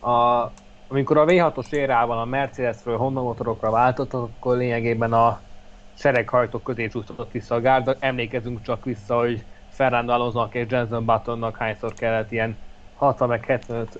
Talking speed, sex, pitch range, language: 145 wpm, male, 115-130 Hz, Hungarian